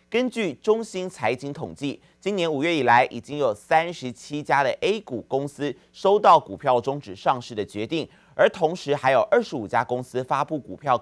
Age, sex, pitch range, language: 30-49, male, 120-165 Hz, Chinese